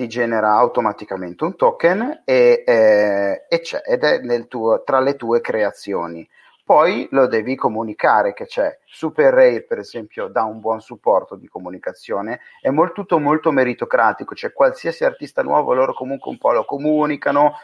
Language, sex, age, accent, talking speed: Italian, male, 40-59, native, 165 wpm